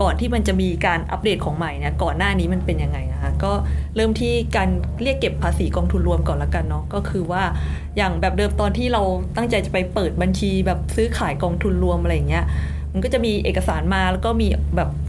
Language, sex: Thai, female